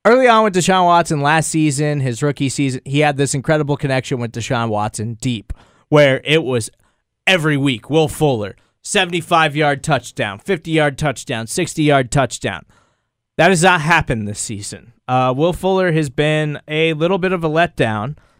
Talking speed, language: 160 wpm, English